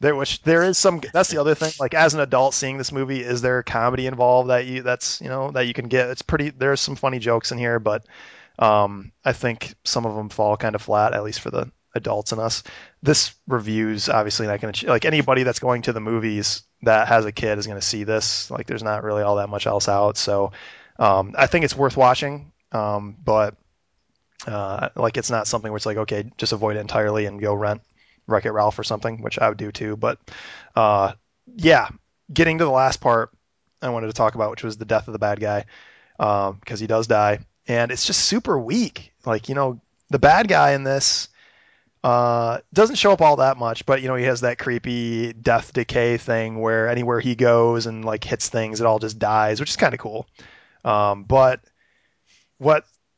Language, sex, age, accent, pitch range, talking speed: English, male, 20-39, American, 105-135 Hz, 220 wpm